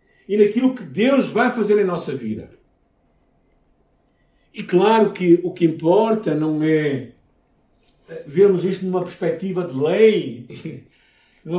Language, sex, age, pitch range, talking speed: Portuguese, male, 60-79, 140-200 Hz, 125 wpm